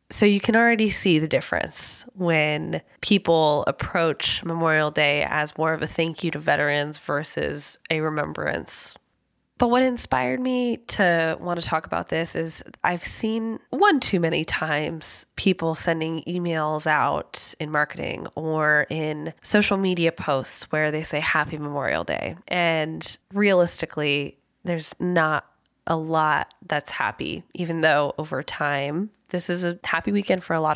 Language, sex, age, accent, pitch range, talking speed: English, female, 20-39, American, 150-175 Hz, 150 wpm